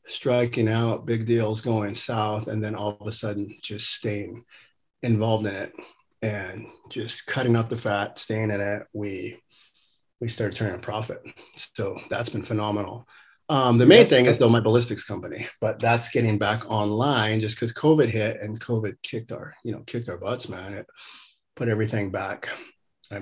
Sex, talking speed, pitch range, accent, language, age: male, 180 wpm, 105-115 Hz, American, English, 30-49